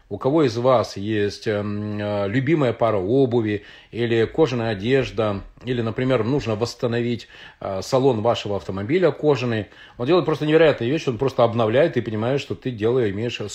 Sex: male